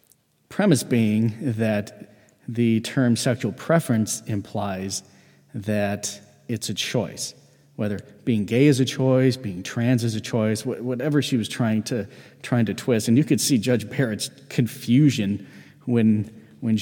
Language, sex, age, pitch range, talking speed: English, male, 40-59, 110-130 Hz, 145 wpm